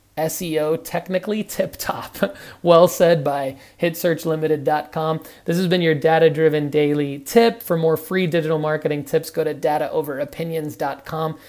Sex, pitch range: male, 145-165 Hz